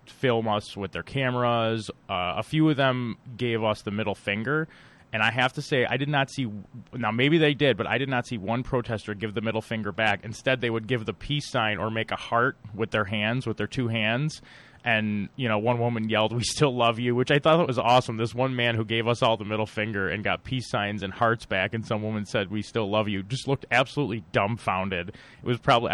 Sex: male